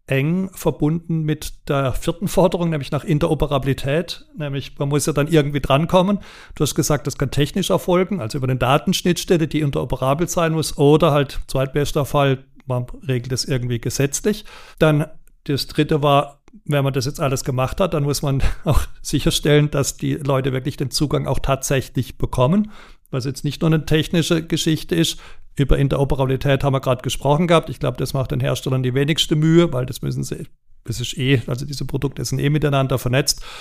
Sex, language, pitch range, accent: male, German, 130-160 Hz, German